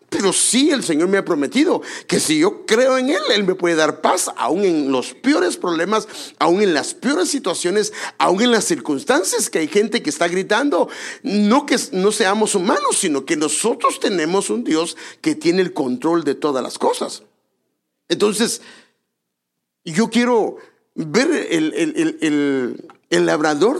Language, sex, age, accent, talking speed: English, male, 50-69, Mexican, 170 wpm